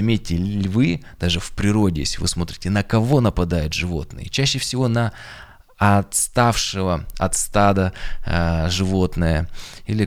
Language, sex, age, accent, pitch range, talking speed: Russian, male, 20-39, native, 85-105 Hz, 125 wpm